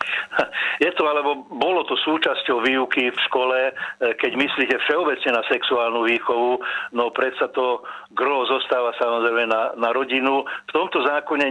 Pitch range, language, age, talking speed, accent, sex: 120-140 Hz, Czech, 50-69, 140 wpm, native, male